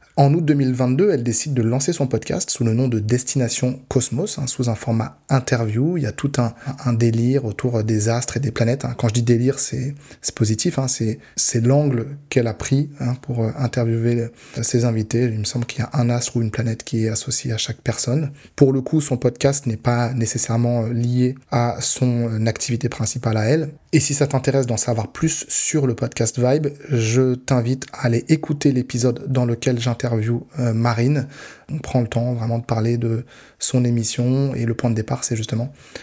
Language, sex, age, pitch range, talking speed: French, male, 20-39, 115-135 Hz, 205 wpm